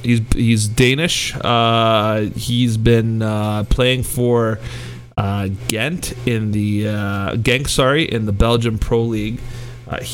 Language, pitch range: English, 110-125 Hz